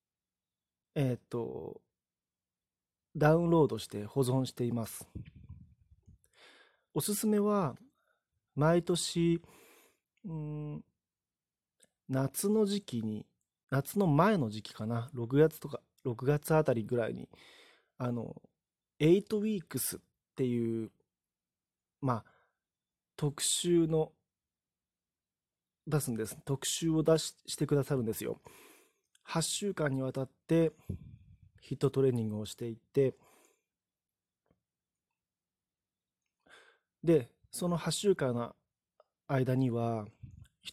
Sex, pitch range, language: male, 110-160 Hz, Japanese